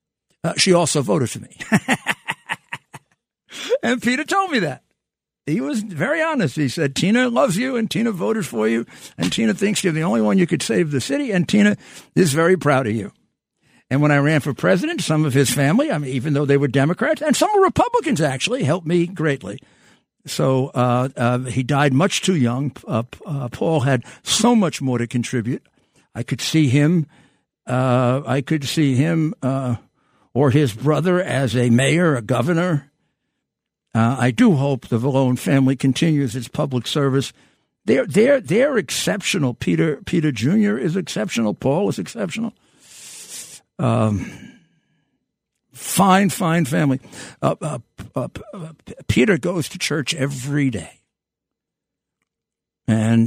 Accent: American